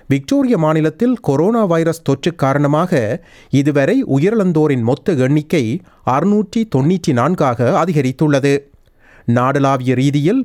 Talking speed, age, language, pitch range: 90 wpm, 30-49, Tamil, 130-170 Hz